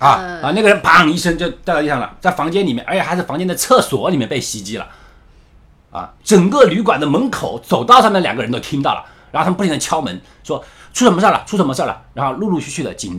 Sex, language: male, Chinese